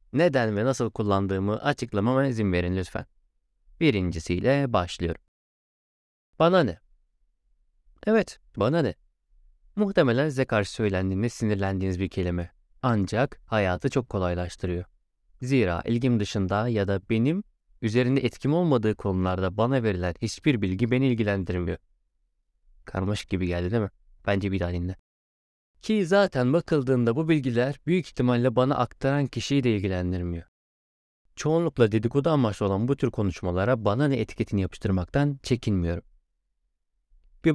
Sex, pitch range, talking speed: male, 90-135 Hz, 120 wpm